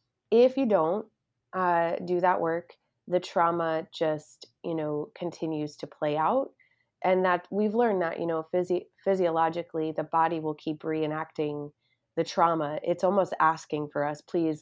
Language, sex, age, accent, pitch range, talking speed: English, female, 20-39, American, 155-175 Hz, 150 wpm